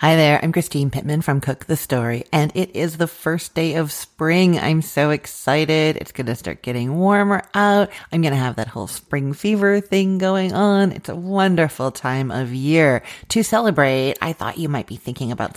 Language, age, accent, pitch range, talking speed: English, 40-59, American, 130-170 Hz, 205 wpm